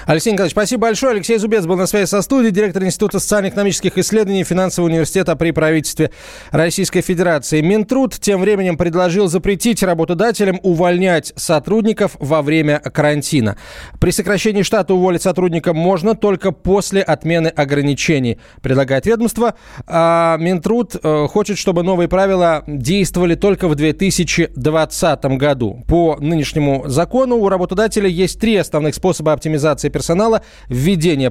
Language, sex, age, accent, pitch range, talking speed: Russian, male, 20-39, native, 145-195 Hz, 130 wpm